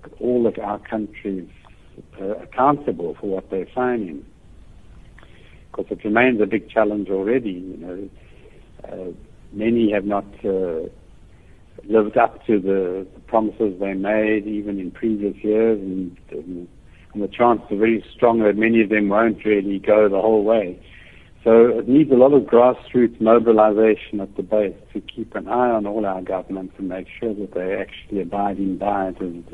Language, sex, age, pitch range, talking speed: English, male, 70-89, 95-110 Hz, 170 wpm